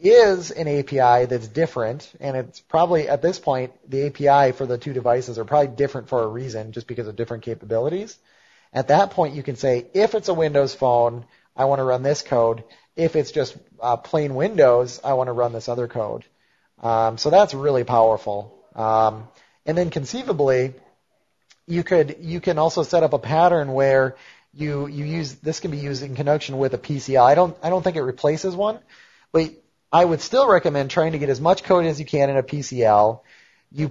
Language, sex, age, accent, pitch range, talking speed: English, male, 30-49, American, 125-155 Hz, 205 wpm